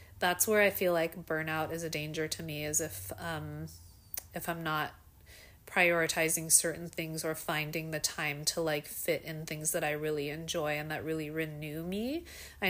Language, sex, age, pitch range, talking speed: English, female, 30-49, 150-175 Hz, 185 wpm